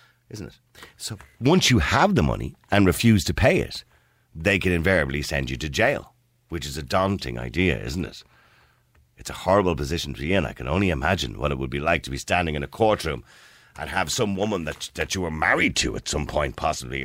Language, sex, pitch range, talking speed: English, male, 75-100 Hz, 220 wpm